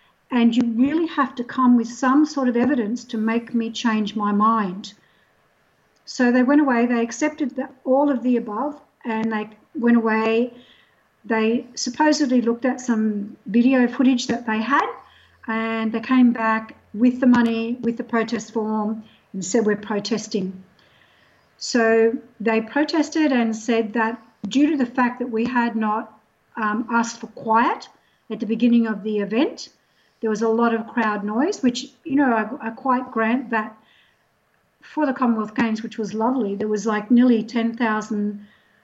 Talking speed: 165 wpm